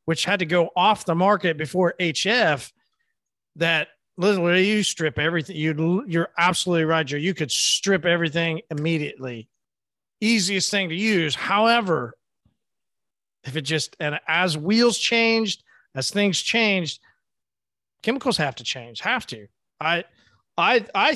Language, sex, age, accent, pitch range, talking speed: English, male, 40-59, American, 150-190 Hz, 135 wpm